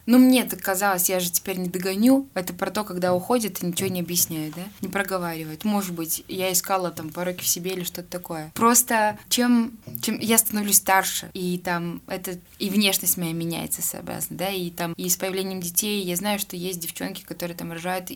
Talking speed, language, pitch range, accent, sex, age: 200 wpm, Russian, 175-210 Hz, native, female, 20-39